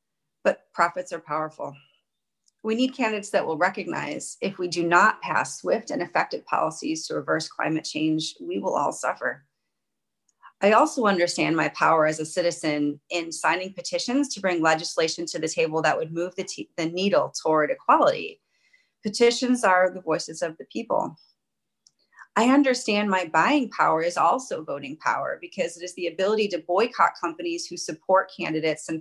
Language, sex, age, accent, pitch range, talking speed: English, female, 30-49, American, 160-215 Hz, 165 wpm